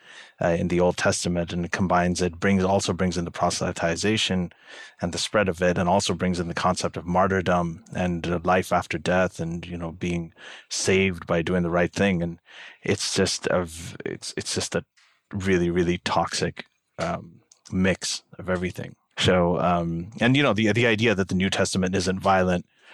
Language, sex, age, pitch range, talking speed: English, male, 30-49, 90-95 Hz, 185 wpm